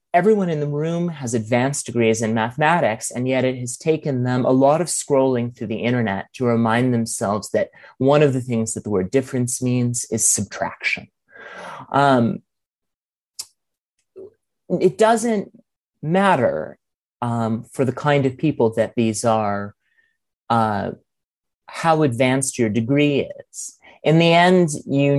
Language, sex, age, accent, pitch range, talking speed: English, male, 30-49, American, 115-145 Hz, 145 wpm